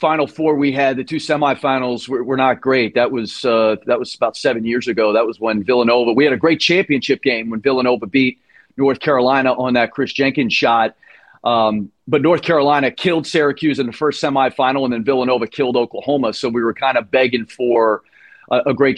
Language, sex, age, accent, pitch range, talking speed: English, male, 40-59, American, 130-155 Hz, 210 wpm